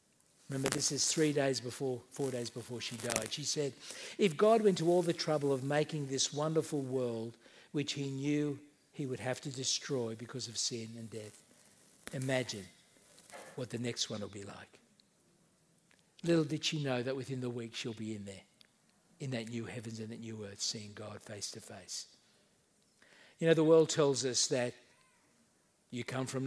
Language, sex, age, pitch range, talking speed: English, male, 60-79, 120-160 Hz, 185 wpm